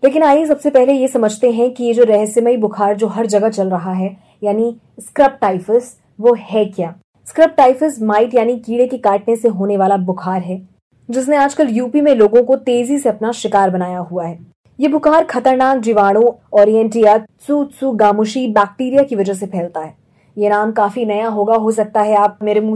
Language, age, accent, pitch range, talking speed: Hindi, 20-39, native, 200-250 Hz, 190 wpm